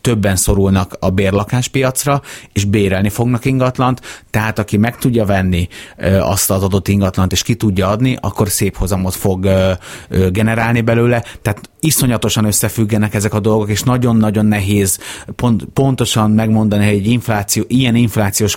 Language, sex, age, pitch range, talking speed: Hungarian, male, 30-49, 100-120 Hz, 135 wpm